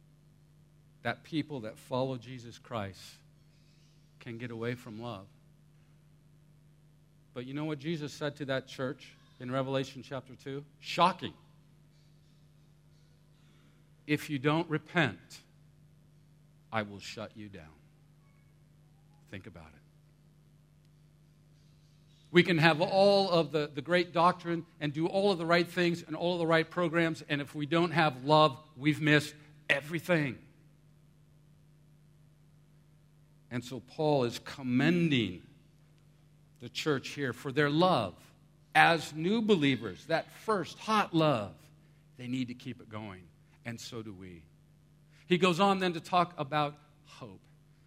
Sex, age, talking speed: male, 50-69, 130 wpm